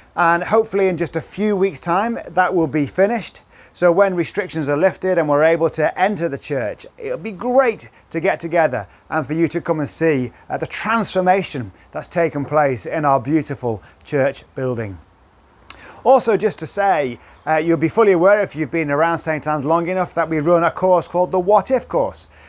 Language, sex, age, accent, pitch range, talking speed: English, male, 30-49, British, 145-200 Hz, 200 wpm